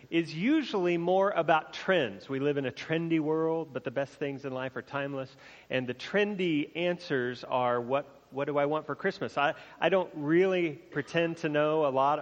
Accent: American